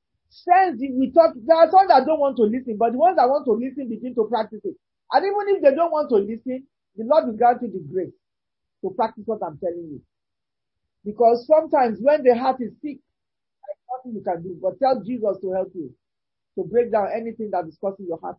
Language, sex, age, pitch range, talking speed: English, male, 50-69, 185-280 Hz, 230 wpm